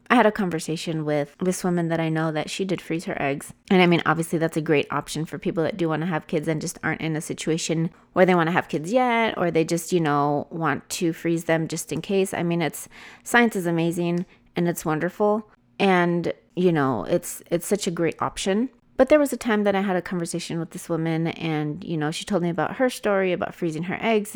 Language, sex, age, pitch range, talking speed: English, female, 30-49, 160-195 Hz, 250 wpm